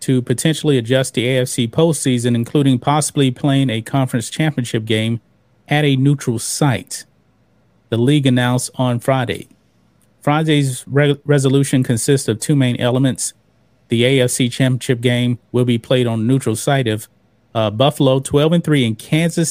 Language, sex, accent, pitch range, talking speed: English, male, American, 120-140 Hz, 150 wpm